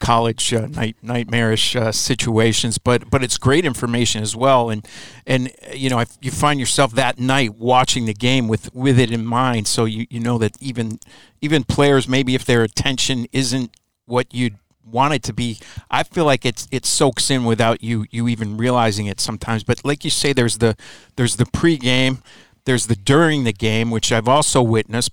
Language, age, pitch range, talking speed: English, 50-69, 115-135 Hz, 200 wpm